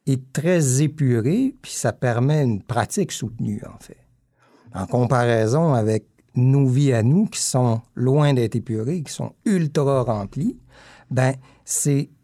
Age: 60-79